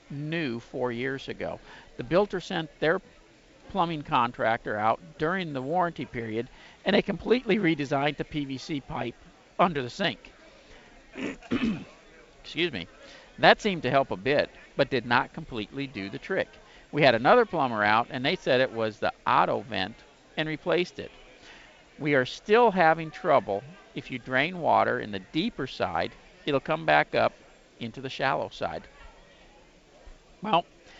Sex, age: male, 50-69